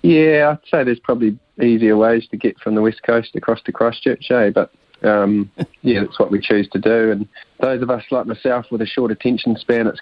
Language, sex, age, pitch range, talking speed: English, male, 30-49, 110-120 Hz, 230 wpm